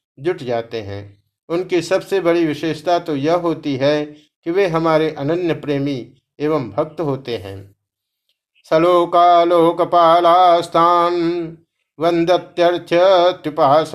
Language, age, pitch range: Hindi, 50-69, 130-165 Hz